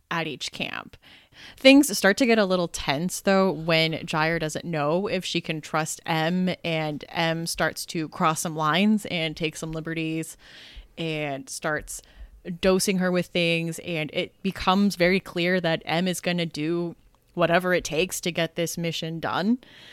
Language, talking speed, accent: English, 170 wpm, American